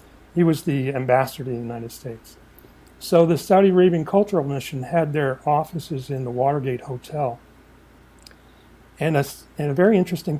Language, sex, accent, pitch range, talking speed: English, male, American, 130-165 Hz, 155 wpm